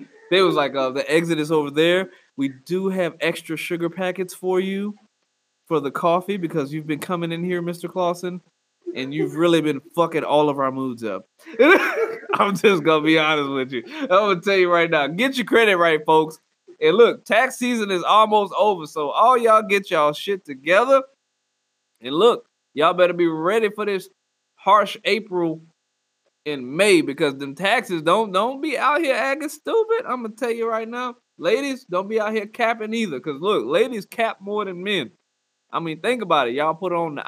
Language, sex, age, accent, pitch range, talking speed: English, male, 20-39, American, 165-220 Hz, 200 wpm